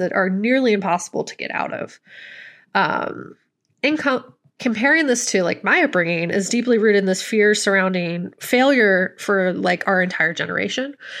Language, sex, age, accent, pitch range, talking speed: English, female, 20-39, American, 185-225 Hz, 155 wpm